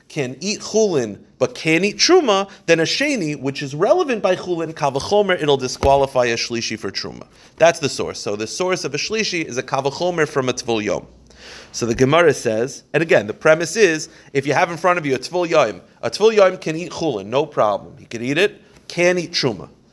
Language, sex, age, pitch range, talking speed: English, male, 30-49, 130-175 Hz, 215 wpm